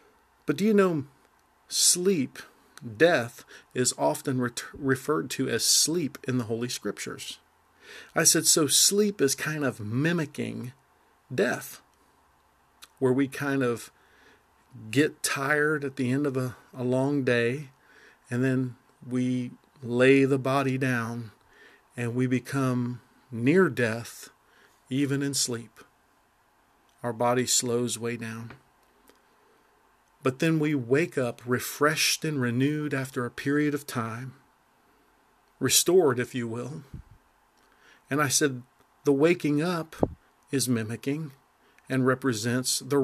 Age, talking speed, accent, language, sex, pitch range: 50-69, 120 wpm, American, English, male, 125-165 Hz